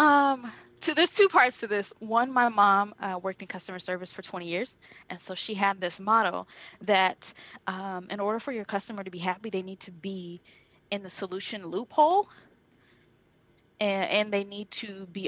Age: 20-39